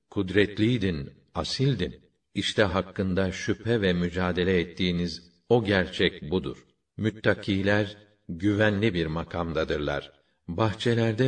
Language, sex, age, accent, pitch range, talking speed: Turkish, male, 50-69, native, 90-105 Hz, 85 wpm